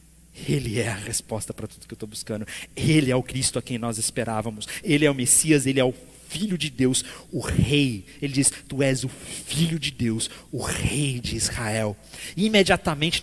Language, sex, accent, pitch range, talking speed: Portuguese, male, Brazilian, 145-210 Hz, 200 wpm